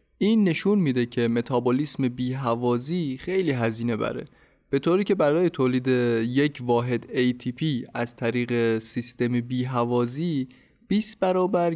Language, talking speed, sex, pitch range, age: Persian, 115 wpm, male, 125-160 Hz, 20-39